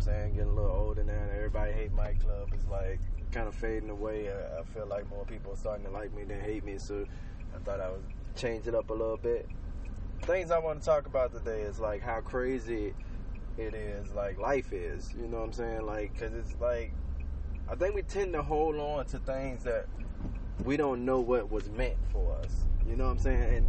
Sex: male